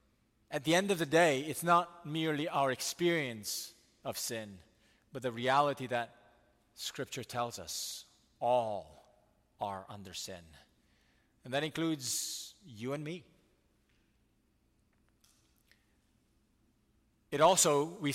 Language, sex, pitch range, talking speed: English, male, 135-170 Hz, 110 wpm